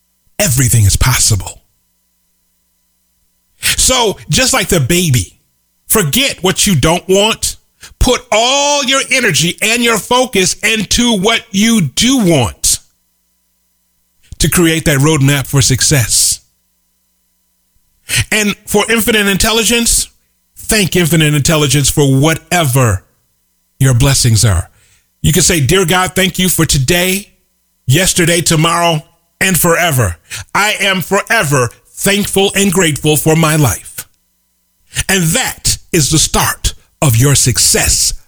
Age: 40-59